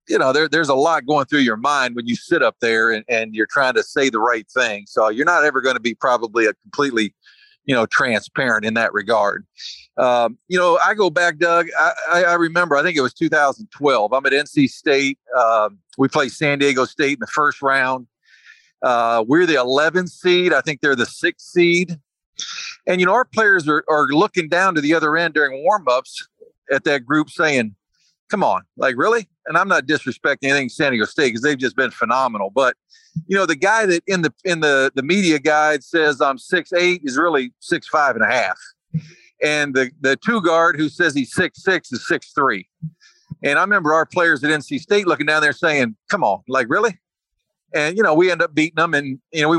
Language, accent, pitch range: English, American, 135-180 Hz